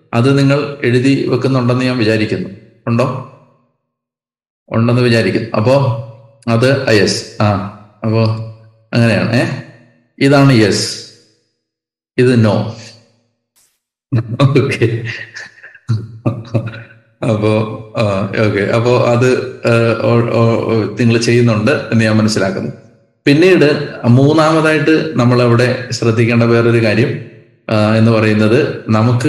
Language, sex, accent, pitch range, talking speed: Malayalam, male, native, 110-130 Hz, 75 wpm